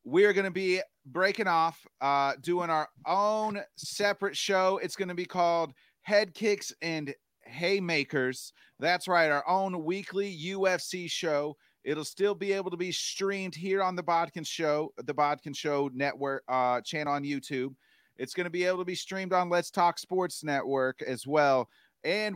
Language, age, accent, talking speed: English, 30-49, American, 170 wpm